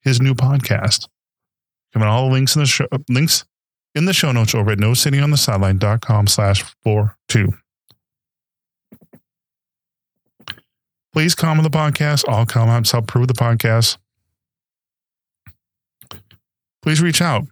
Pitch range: 105-135 Hz